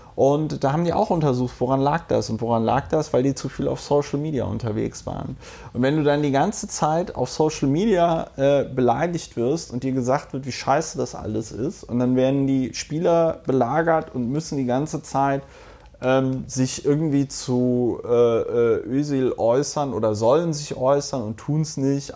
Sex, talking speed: male, 190 wpm